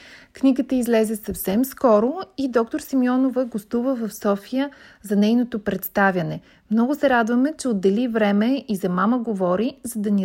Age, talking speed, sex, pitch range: 30-49, 150 wpm, female, 195-255 Hz